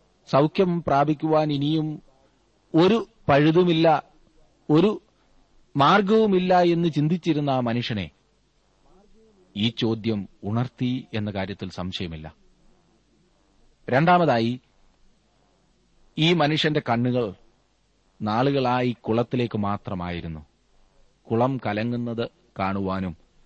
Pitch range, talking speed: 105-145 Hz, 70 wpm